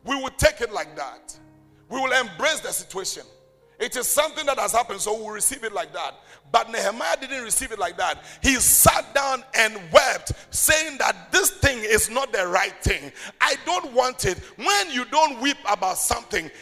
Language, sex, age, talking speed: English, male, 50-69, 200 wpm